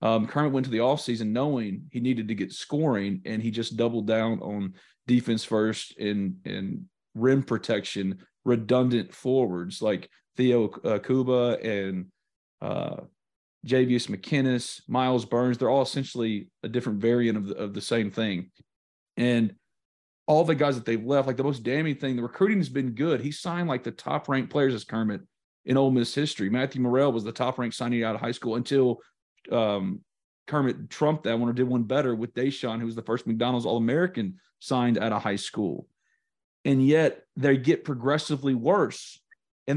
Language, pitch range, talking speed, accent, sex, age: English, 115-145 Hz, 180 wpm, American, male, 40-59